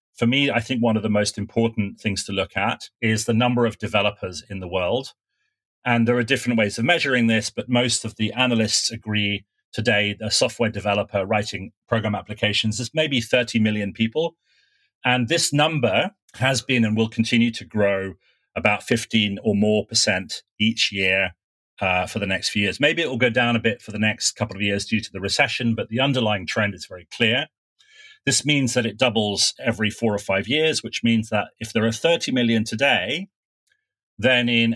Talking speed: 200 wpm